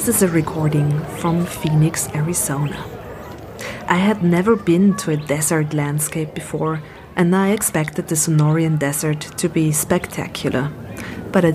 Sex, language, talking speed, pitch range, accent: female, German, 140 wpm, 150-175 Hz, German